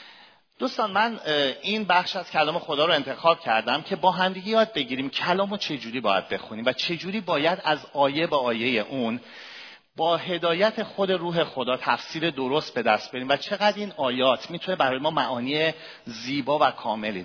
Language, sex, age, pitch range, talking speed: Persian, male, 40-59, 130-180 Hz, 175 wpm